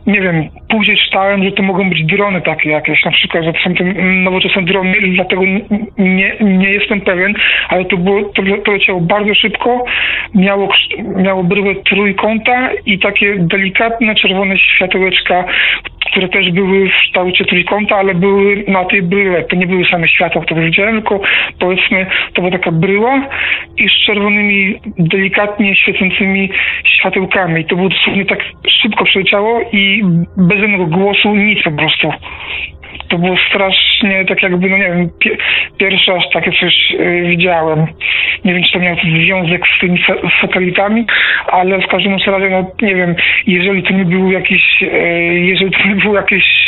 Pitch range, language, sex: 180-200 Hz, Polish, male